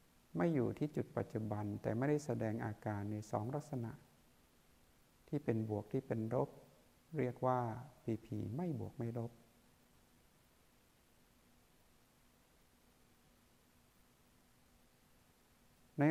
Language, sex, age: Thai, male, 60-79